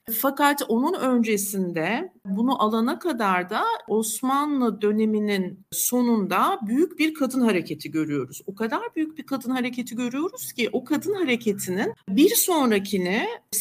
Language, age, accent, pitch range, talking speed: Turkish, 50-69, native, 200-255 Hz, 125 wpm